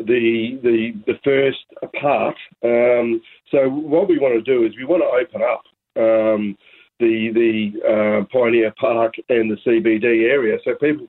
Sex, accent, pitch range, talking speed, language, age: male, Australian, 115-145 Hz, 160 wpm, English, 50-69